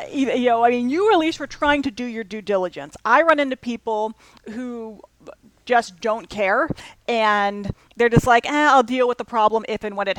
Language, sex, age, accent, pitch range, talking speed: English, female, 40-59, American, 210-260 Hz, 210 wpm